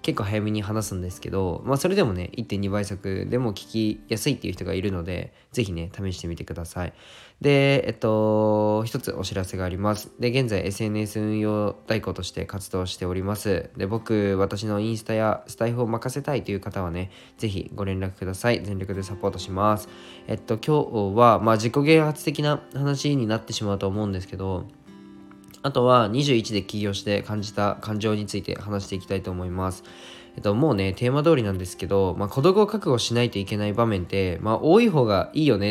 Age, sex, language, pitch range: 20-39, male, Japanese, 95-120 Hz